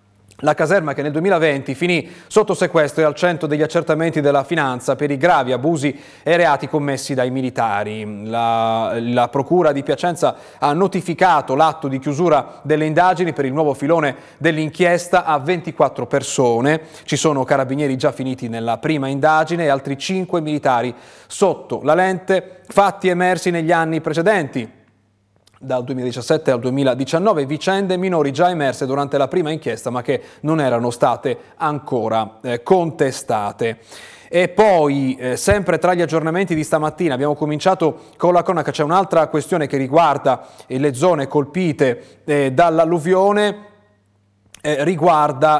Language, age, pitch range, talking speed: Italian, 30-49, 135-175 Hz, 140 wpm